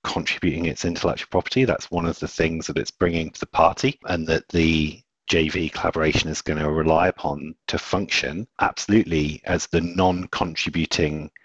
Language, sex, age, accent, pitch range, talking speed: English, male, 40-59, British, 75-90 Hz, 165 wpm